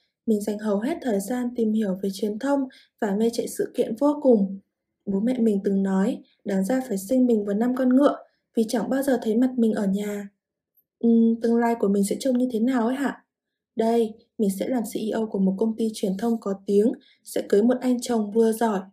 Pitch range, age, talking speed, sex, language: 210-255 Hz, 20-39, 230 wpm, female, Vietnamese